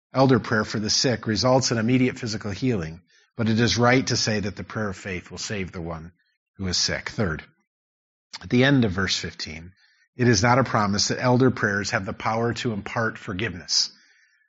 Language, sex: English, male